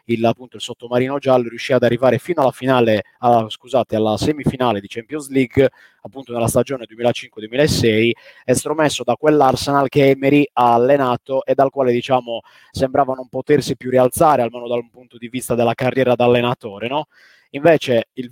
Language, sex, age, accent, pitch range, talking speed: Italian, male, 20-39, native, 120-140 Hz, 165 wpm